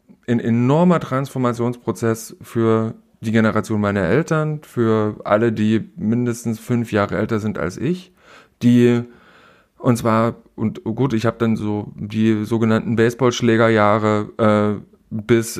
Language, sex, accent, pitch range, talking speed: German, male, German, 110-130 Hz, 125 wpm